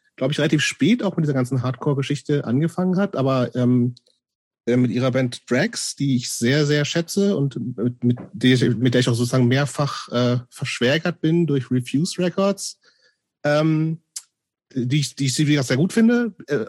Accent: German